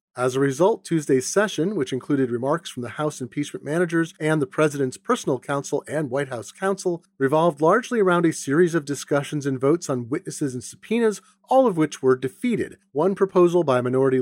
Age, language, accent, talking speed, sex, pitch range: 40-59, English, American, 185 wpm, male, 135-185 Hz